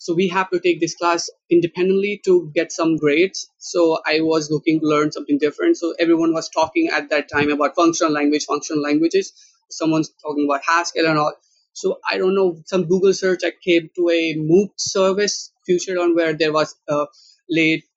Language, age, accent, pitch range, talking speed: English, 20-39, Indian, 150-185 Hz, 195 wpm